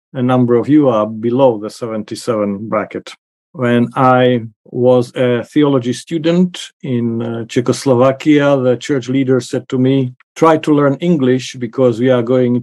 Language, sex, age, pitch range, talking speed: English, male, 50-69, 115-135 Hz, 145 wpm